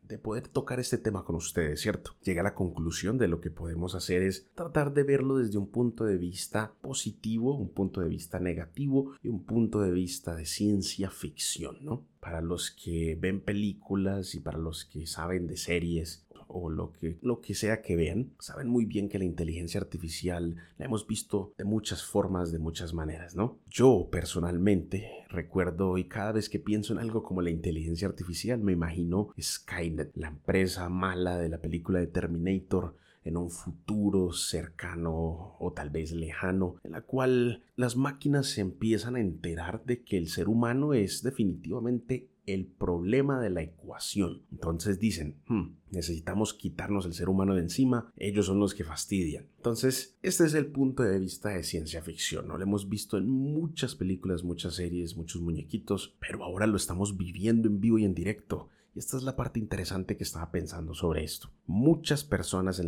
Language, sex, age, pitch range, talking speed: English, male, 30-49, 85-110 Hz, 180 wpm